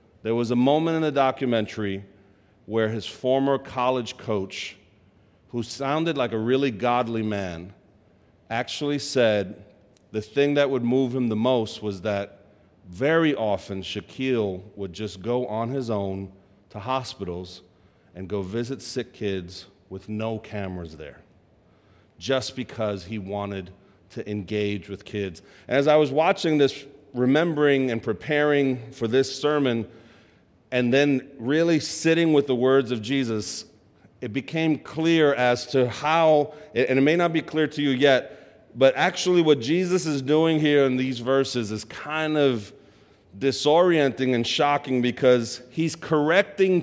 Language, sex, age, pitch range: English, male, 40-59, 105-150 Hz